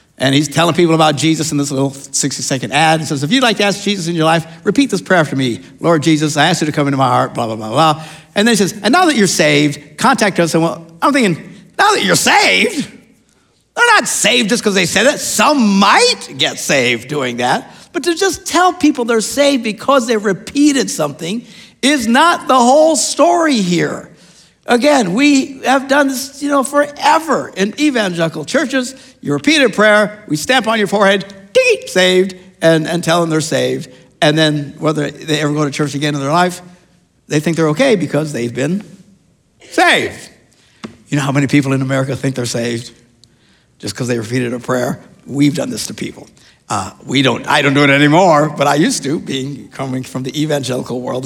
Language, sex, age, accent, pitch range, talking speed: English, male, 60-79, American, 145-235 Hz, 205 wpm